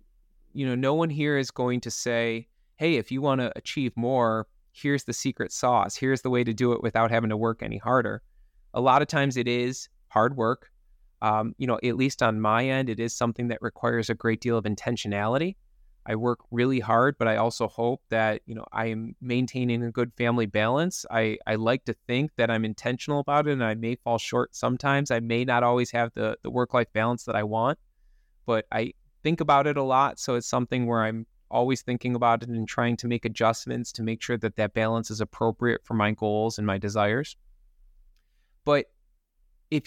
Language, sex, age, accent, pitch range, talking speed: English, male, 20-39, American, 115-135 Hz, 210 wpm